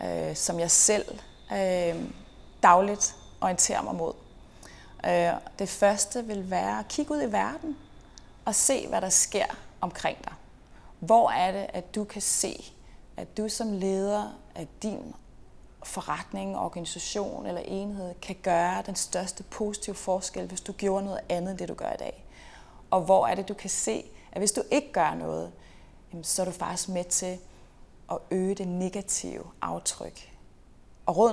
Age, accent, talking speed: 30-49, native, 160 wpm